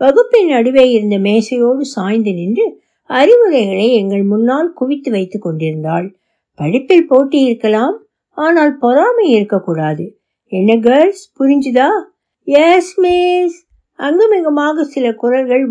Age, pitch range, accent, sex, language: 60-79, 210-310 Hz, native, female, Tamil